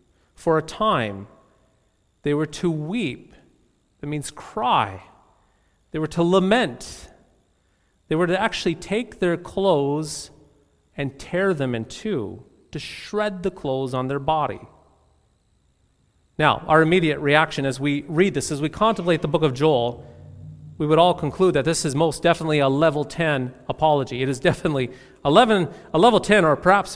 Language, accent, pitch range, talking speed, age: English, American, 130-170 Hz, 155 wpm, 40-59